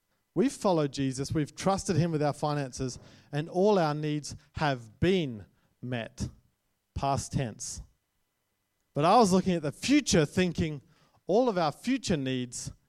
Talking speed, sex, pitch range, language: 145 wpm, male, 130-185 Hz, English